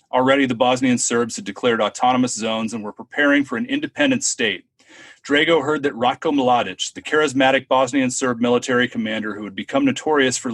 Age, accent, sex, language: 30-49, American, male, English